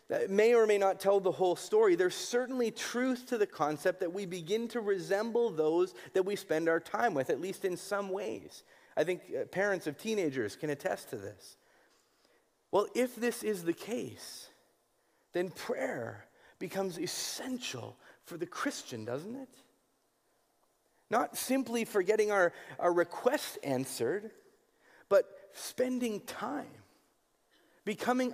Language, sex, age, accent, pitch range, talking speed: English, male, 40-59, American, 165-230 Hz, 145 wpm